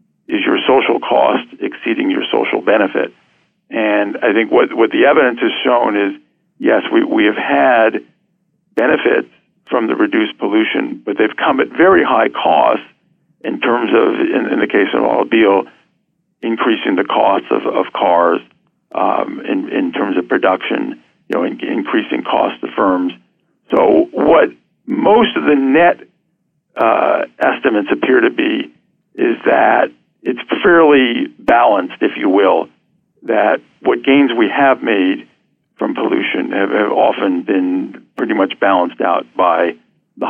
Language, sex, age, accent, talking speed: English, male, 50-69, American, 150 wpm